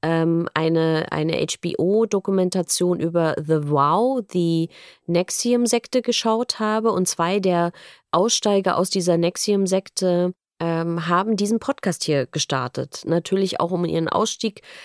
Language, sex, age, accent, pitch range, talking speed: German, female, 20-39, German, 175-210 Hz, 120 wpm